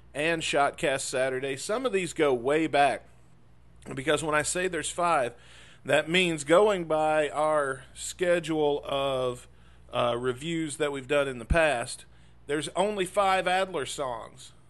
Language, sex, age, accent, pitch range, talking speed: English, male, 40-59, American, 115-160 Hz, 145 wpm